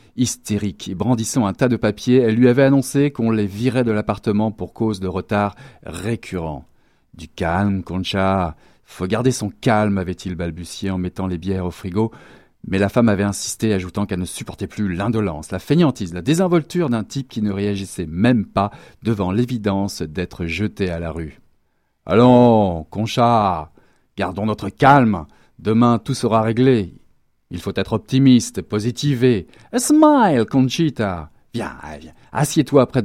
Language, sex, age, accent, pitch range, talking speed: French, male, 40-59, French, 95-130 Hz, 160 wpm